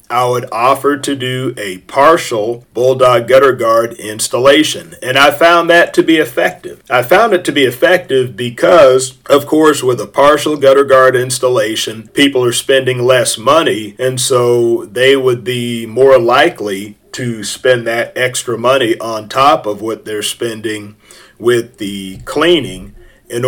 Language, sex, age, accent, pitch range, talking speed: English, male, 40-59, American, 115-140 Hz, 155 wpm